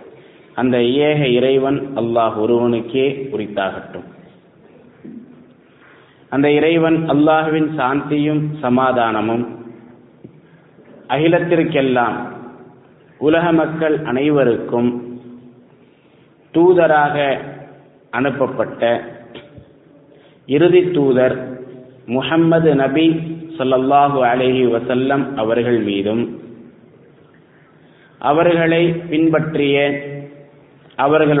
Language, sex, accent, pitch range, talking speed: English, male, Indian, 120-150 Hz, 55 wpm